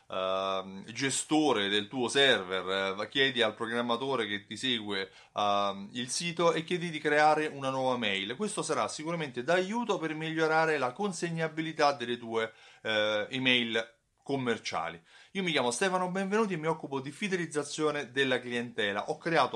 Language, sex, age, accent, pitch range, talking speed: Italian, male, 30-49, native, 115-160 Hz, 150 wpm